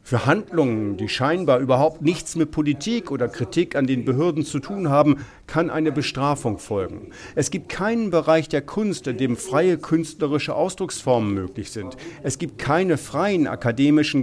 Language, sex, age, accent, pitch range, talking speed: German, male, 50-69, German, 130-165 Hz, 160 wpm